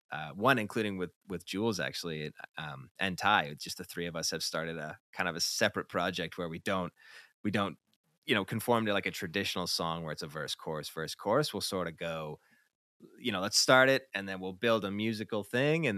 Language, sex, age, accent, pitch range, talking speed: English, male, 30-49, American, 85-100 Hz, 225 wpm